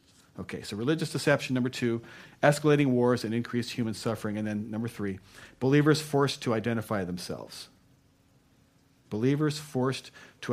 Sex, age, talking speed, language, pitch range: male, 40-59, 135 wpm, English, 110-140 Hz